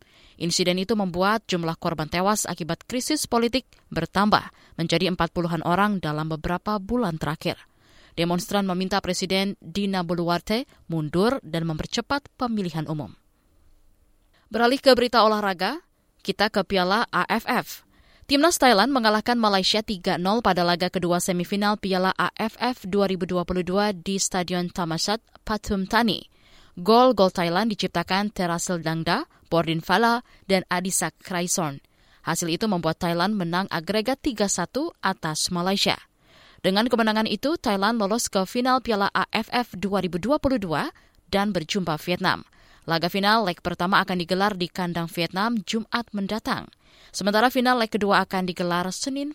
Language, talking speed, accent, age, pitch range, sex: Indonesian, 125 wpm, native, 20-39, 175-220 Hz, female